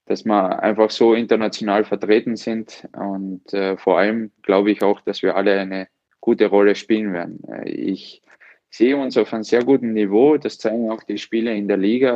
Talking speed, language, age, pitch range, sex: 190 wpm, German, 20-39, 95-105 Hz, male